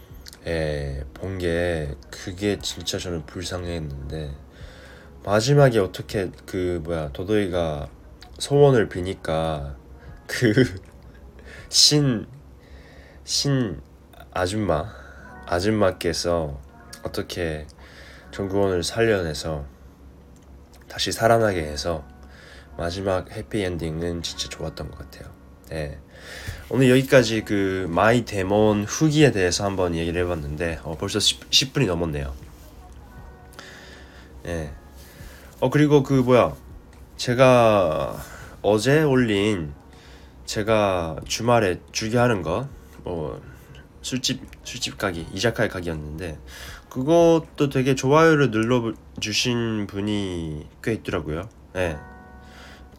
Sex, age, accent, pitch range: male, 20-39, Korean, 75-105 Hz